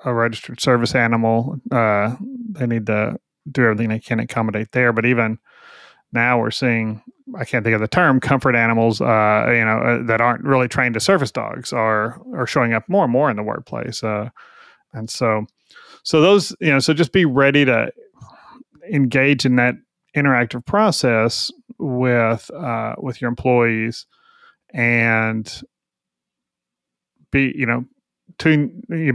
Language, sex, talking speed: English, male, 150 wpm